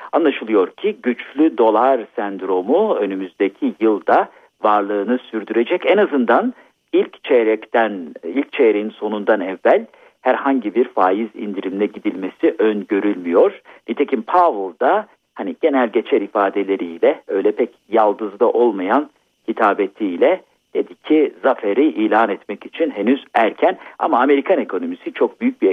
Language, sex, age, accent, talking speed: Turkish, male, 50-69, native, 115 wpm